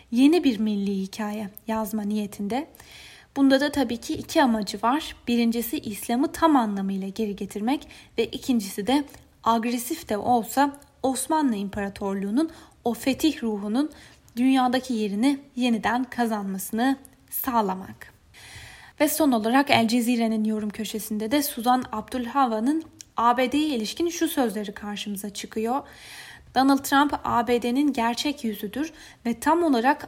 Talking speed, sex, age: 120 wpm, female, 10-29